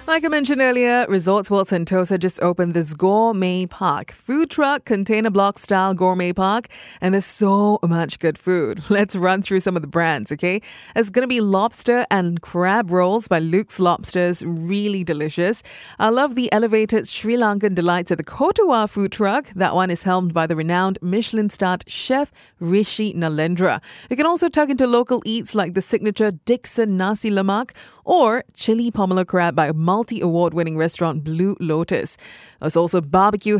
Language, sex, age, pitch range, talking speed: English, female, 30-49, 180-225 Hz, 170 wpm